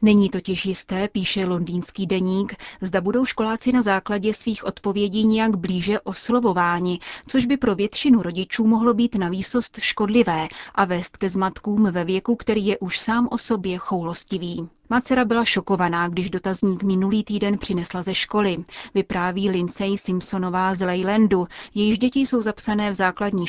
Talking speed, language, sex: 155 wpm, Czech, female